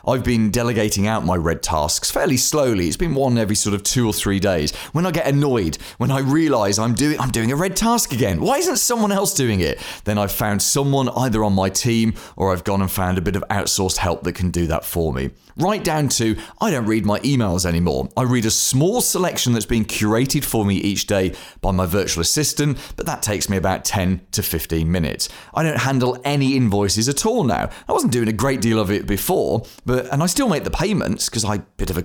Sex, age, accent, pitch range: male, 30-49, British, 100-140 Hz